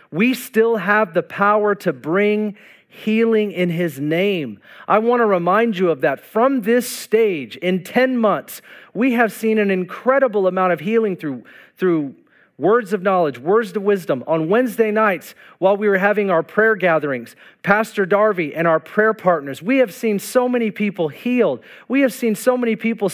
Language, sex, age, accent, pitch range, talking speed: English, male, 40-59, American, 195-240 Hz, 180 wpm